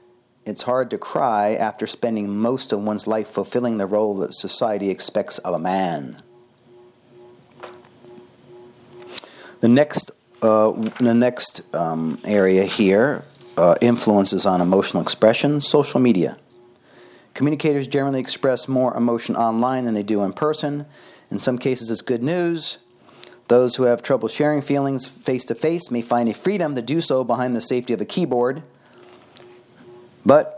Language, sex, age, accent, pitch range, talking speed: English, male, 40-59, American, 105-125 Hz, 140 wpm